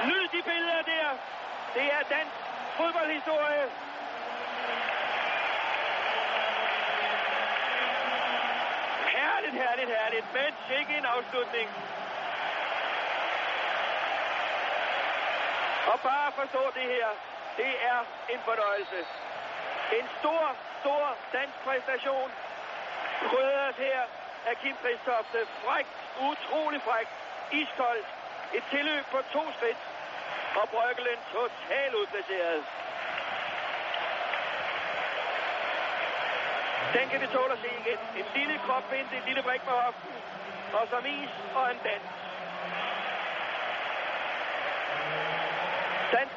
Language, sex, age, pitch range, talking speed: Danish, male, 60-79, 245-300 Hz, 90 wpm